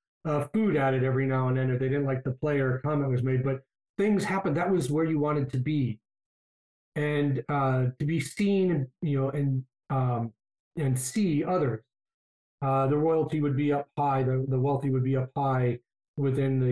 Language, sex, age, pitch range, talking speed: English, male, 40-59, 130-155 Hz, 200 wpm